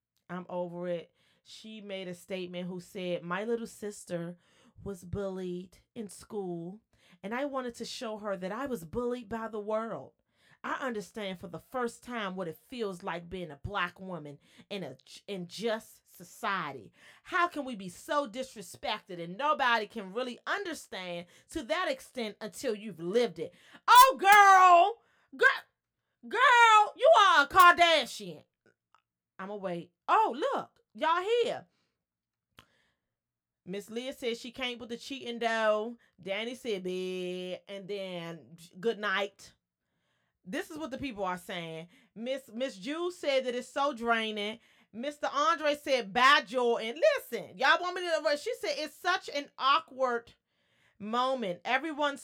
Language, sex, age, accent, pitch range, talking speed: English, female, 30-49, American, 185-270 Hz, 155 wpm